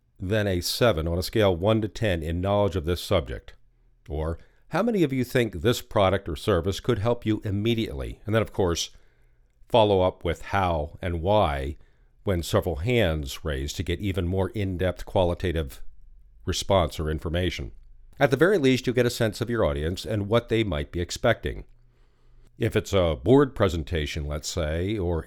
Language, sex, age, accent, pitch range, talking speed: English, male, 50-69, American, 85-120 Hz, 180 wpm